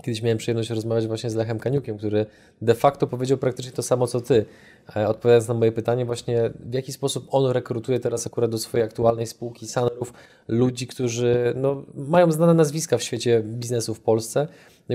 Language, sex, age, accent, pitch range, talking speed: Polish, male, 20-39, native, 115-140 Hz, 185 wpm